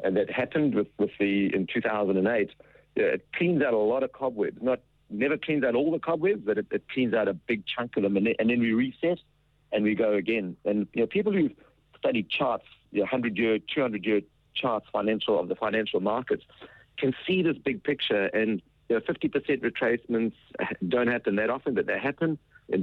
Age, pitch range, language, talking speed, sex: 50-69, 105-140 Hz, English, 215 wpm, male